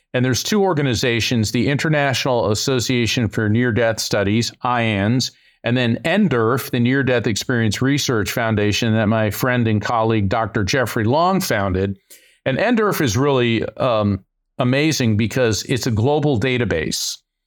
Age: 50-69